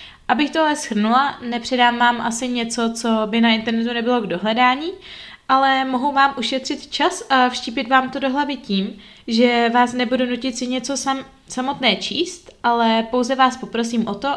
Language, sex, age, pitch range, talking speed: Czech, female, 20-39, 220-265 Hz, 165 wpm